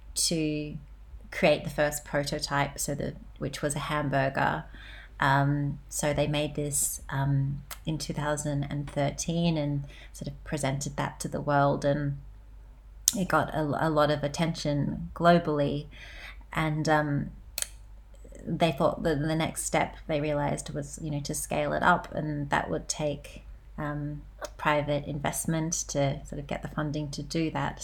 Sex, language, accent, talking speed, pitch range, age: female, English, Australian, 155 wpm, 145-160 Hz, 30-49